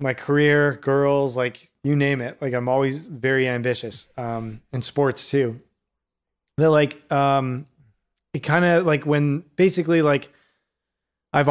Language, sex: English, male